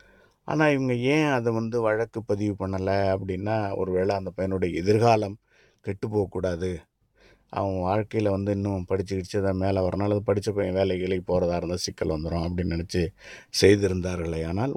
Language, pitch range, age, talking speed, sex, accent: Tamil, 95-120 Hz, 50-69, 135 wpm, male, native